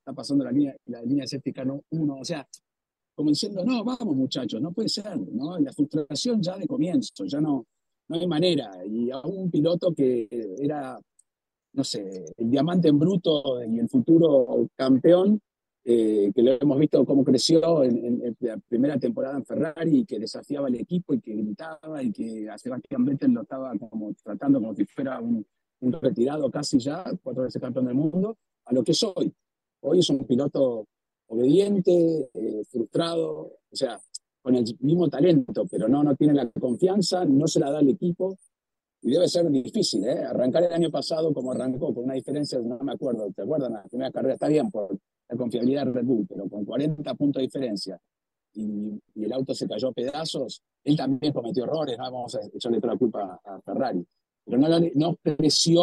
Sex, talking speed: male, 190 wpm